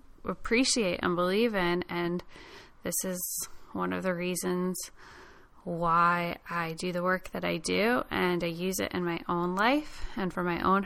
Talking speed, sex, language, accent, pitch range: 170 wpm, female, English, American, 175-215 Hz